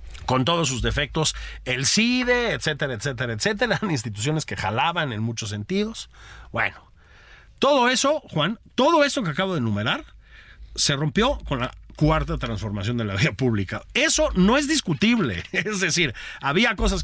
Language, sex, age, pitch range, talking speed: Spanish, male, 50-69, 115-195 Hz, 155 wpm